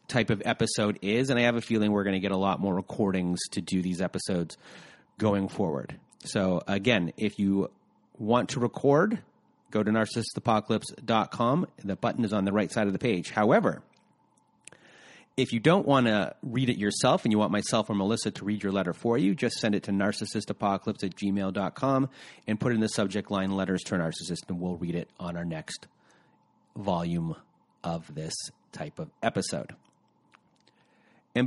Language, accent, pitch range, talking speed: English, American, 95-115 Hz, 180 wpm